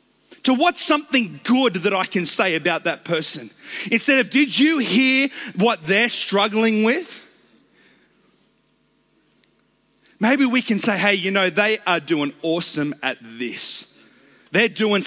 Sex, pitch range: male, 150-220 Hz